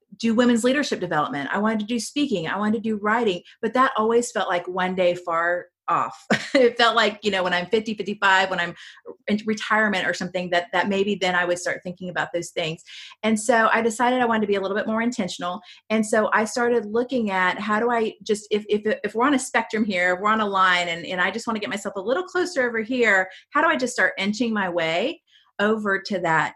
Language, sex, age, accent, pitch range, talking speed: English, female, 30-49, American, 175-220 Hz, 245 wpm